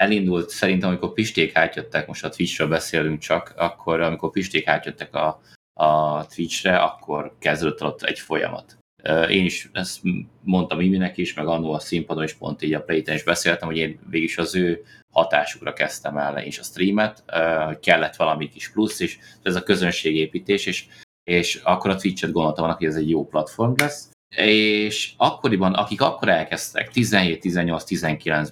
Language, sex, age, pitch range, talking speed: Hungarian, male, 30-49, 80-100 Hz, 170 wpm